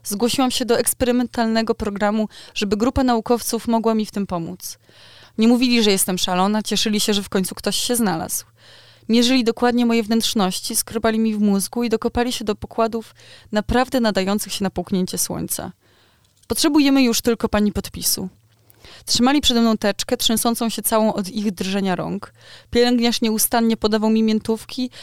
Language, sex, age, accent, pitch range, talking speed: Polish, female, 20-39, native, 185-235 Hz, 160 wpm